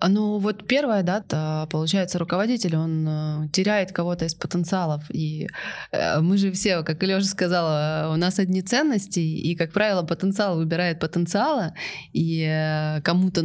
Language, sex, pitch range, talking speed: Russian, female, 160-190 Hz, 135 wpm